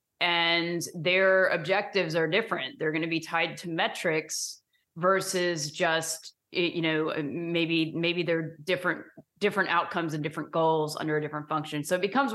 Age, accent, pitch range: 30-49, American, 160-190 Hz